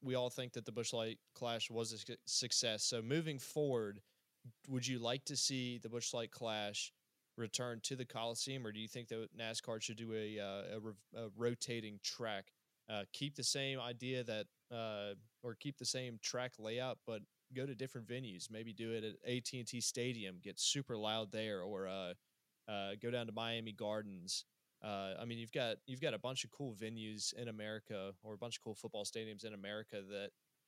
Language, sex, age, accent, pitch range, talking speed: English, male, 20-39, American, 105-125 Hz, 195 wpm